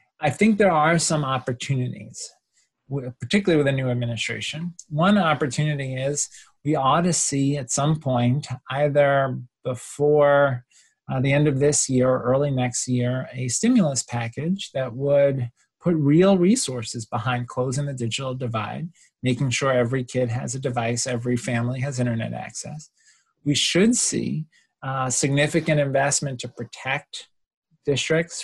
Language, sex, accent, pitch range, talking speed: English, male, American, 130-165 Hz, 140 wpm